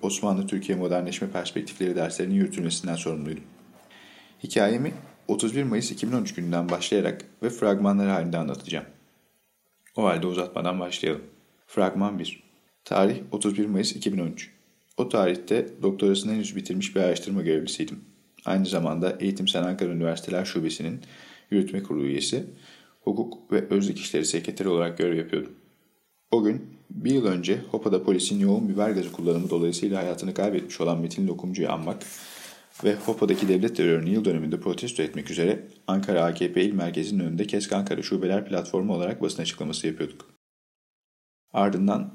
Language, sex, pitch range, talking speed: Turkish, male, 85-105 Hz, 130 wpm